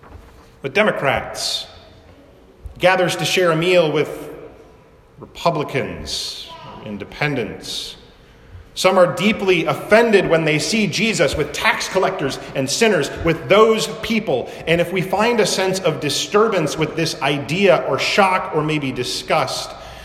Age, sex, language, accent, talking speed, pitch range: 40-59, male, English, American, 125 wpm, 110-185 Hz